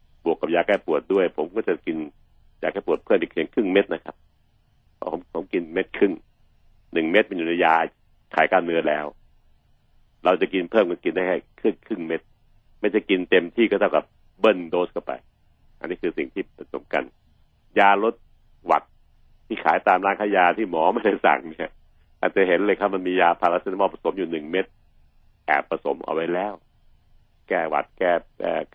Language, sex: Thai, male